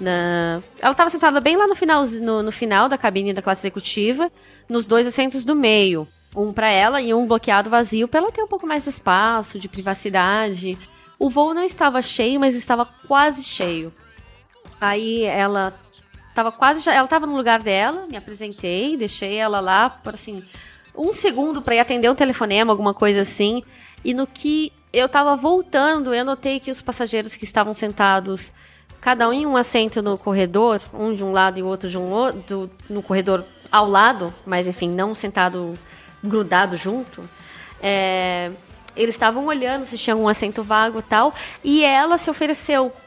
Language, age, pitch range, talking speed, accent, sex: Portuguese, 20-39, 200-280 Hz, 170 wpm, Brazilian, female